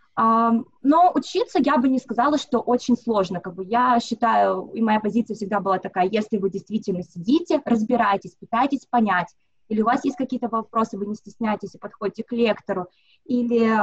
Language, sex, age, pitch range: Russian, female, 20-39, 205-250 Hz